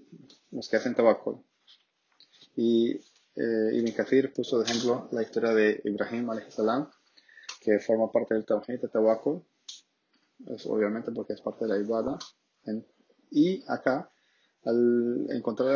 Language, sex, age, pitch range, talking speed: Spanish, male, 20-39, 110-130 Hz, 130 wpm